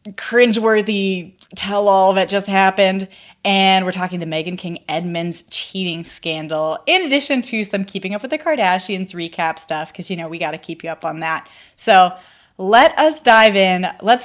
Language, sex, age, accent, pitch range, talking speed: English, female, 20-39, American, 175-215 Hz, 175 wpm